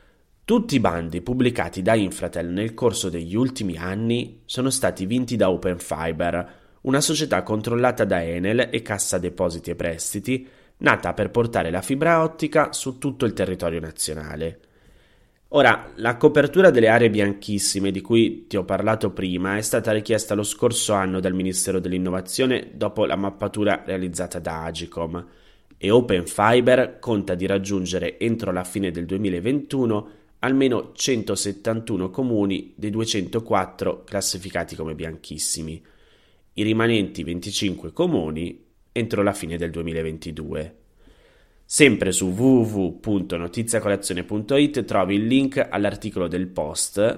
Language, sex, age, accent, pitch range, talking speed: Italian, male, 20-39, native, 90-115 Hz, 130 wpm